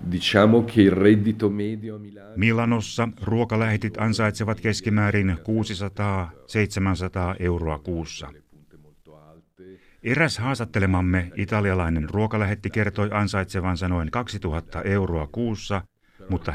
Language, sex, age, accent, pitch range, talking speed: Finnish, male, 60-79, native, 90-110 Hz, 65 wpm